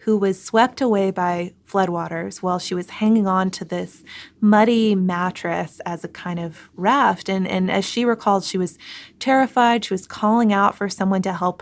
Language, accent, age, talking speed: English, American, 20-39, 185 wpm